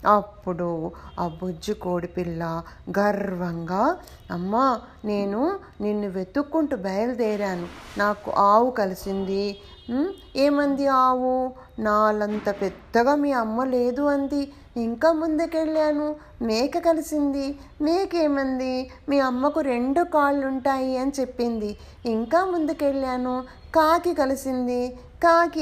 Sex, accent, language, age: female, native, Telugu, 30-49